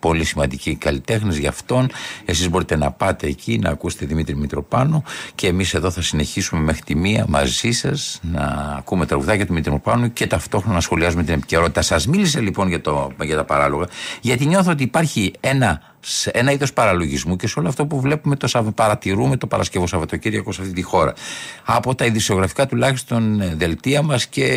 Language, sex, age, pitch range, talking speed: Greek, male, 50-69, 80-130 Hz, 180 wpm